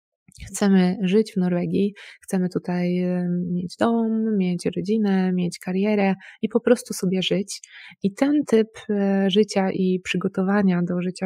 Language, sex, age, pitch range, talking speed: Polish, female, 20-39, 185-210 Hz, 135 wpm